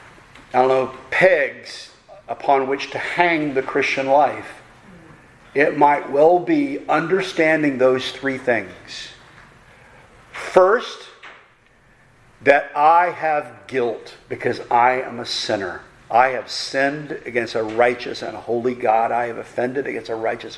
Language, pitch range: English, 115-140 Hz